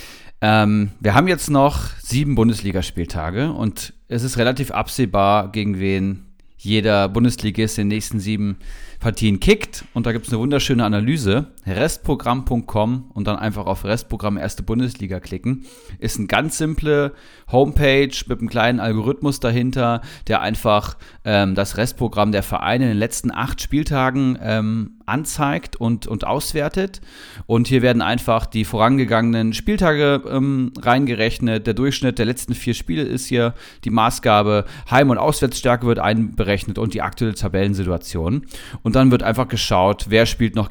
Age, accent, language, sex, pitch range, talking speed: 30-49, German, German, male, 100-130 Hz, 150 wpm